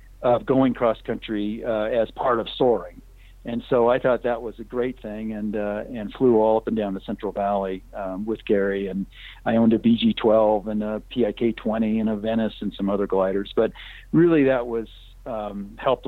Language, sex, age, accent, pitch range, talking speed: English, male, 50-69, American, 100-115 Hz, 200 wpm